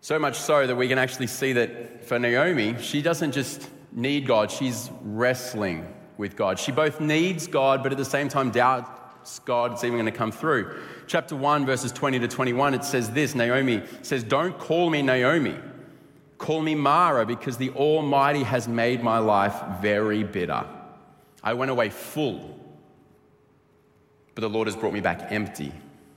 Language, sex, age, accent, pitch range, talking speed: English, male, 30-49, Australian, 110-135 Hz, 170 wpm